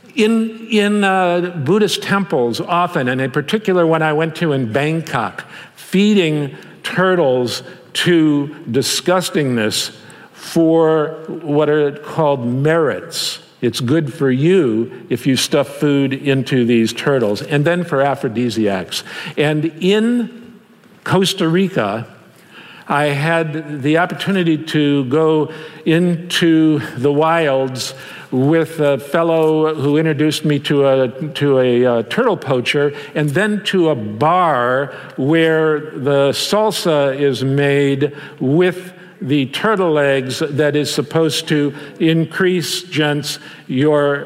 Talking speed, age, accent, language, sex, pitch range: 115 wpm, 50-69, American, English, male, 140-170 Hz